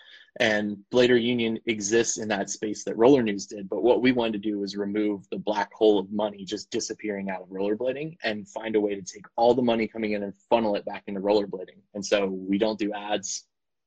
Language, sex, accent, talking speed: English, male, American, 225 wpm